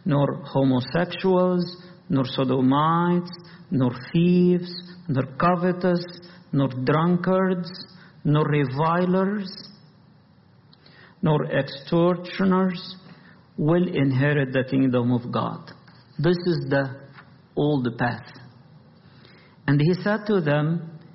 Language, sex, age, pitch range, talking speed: English, male, 50-69, 135-175 Hz, 85 wpm